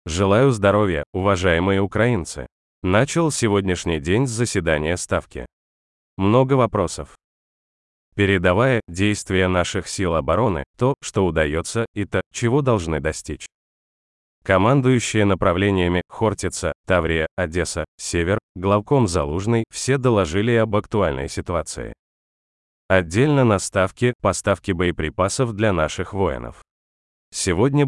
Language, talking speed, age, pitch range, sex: Russian, 100 wpm, 30-49, 85-110 Hz, male